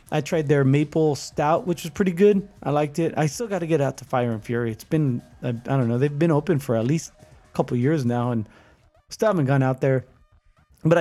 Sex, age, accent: male, 20-39, American